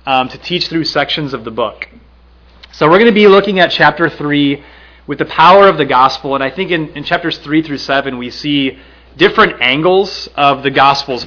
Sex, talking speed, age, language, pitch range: male, 210 wpm, 30-49, English, 115-165 Hz